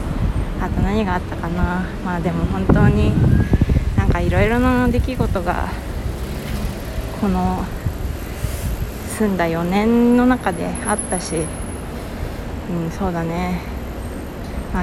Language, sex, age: Japanese, female, 20-39